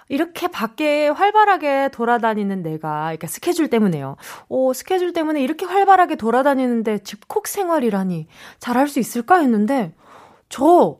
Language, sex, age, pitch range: Korean, female, 20-39, 210-330 Hz